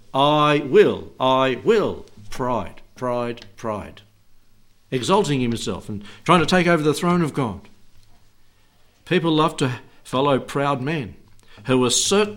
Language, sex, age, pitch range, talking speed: English, male, 60-79, 110-150 Hz, 125 wpm